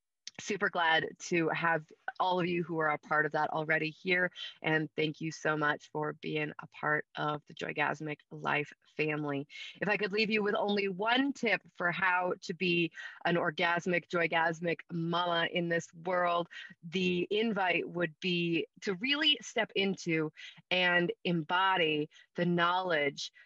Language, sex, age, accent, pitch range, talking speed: English, female, 30-49, American, 155-185 Hz, 155 wpm